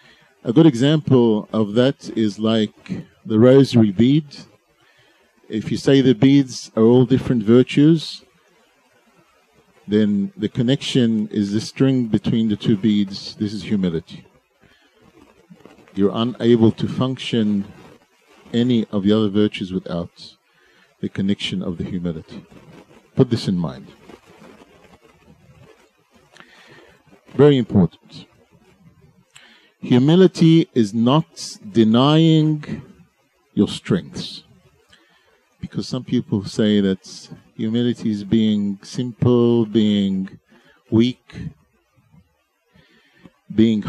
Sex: male